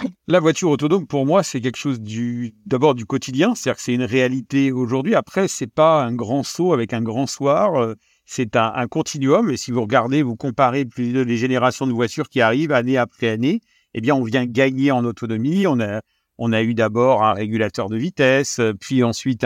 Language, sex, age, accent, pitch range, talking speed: French, male, 50-69, French, 115-140 Hz, 215 wpm